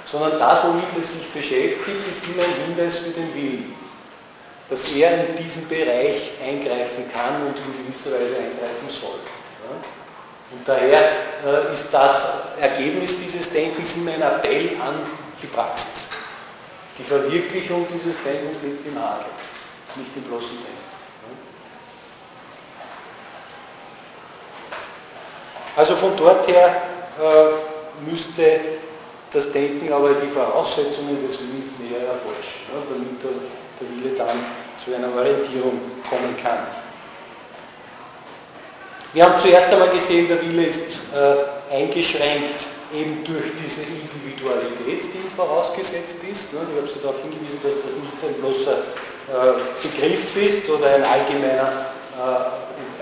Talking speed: 125 wpm